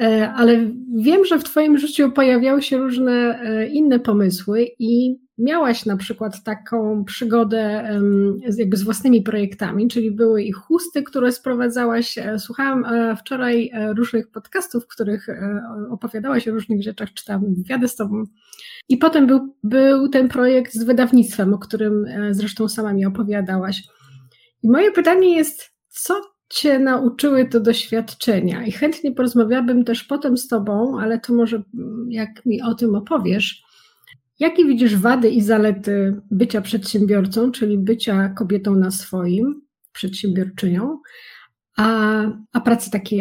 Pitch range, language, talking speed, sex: 205-250 Hz, Polish, 130 wpm, female